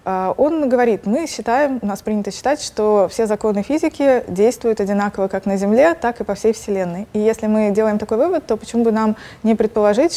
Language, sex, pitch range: Russian, female, 200-225 Hz